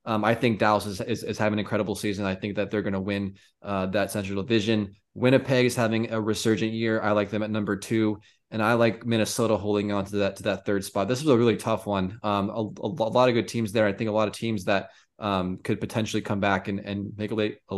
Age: 20-39